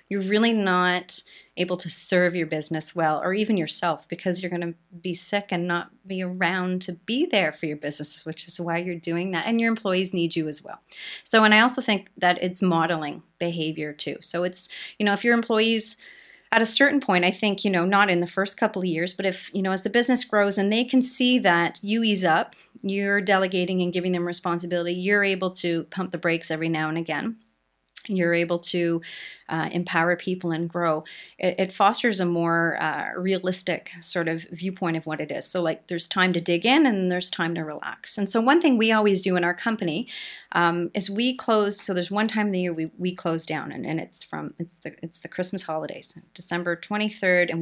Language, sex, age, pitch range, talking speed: English, female, 30-49, 170-205 Hz, 225 wpm